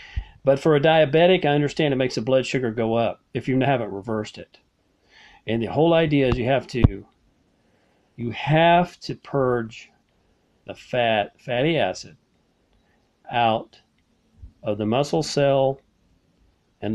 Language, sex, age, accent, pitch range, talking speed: English, male, 40-59, American, 115-145 Hz, 140 wpm